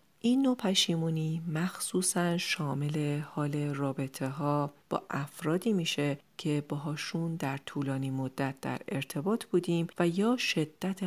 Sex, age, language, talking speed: female, 40-59, Persian, 120 wpm